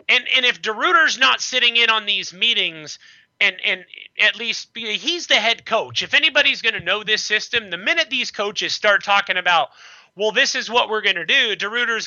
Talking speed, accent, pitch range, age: 205 wpm, American, 160-225 Hz, 30-49